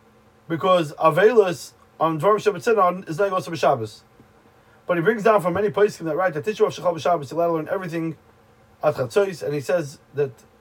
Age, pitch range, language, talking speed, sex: 30-49, 140-180 Hz, English, 190 wpm, male